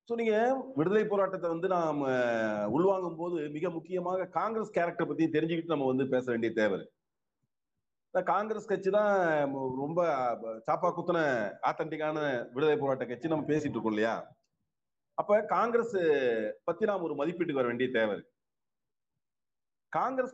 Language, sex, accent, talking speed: Tamil, male, native, 115 wpm